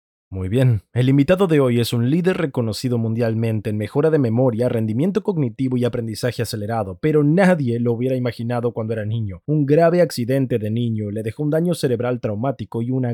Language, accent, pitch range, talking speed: Spanish, Argentinian, 115-145 Hz, 185 wpm